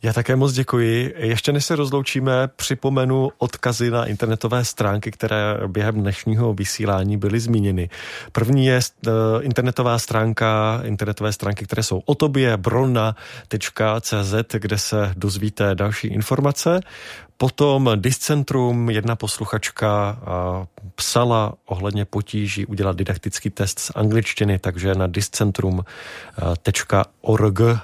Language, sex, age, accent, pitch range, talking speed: Czech, male, 30-49, native, 100-125 Hz, 110 wpm